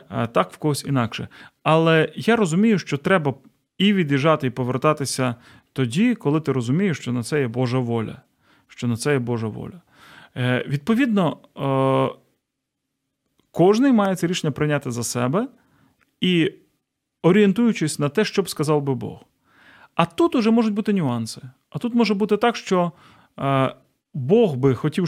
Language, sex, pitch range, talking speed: Ukrainian, male, 135-205 Hz, 135 wpm